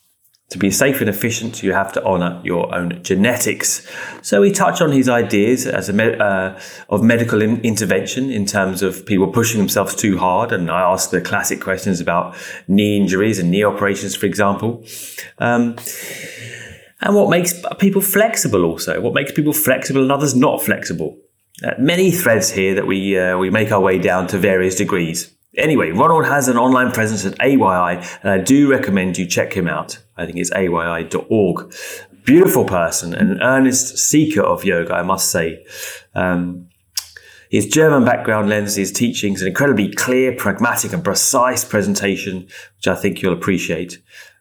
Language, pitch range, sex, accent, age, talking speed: English, 95-130 Hz, male, British, 30-49, 170 wpm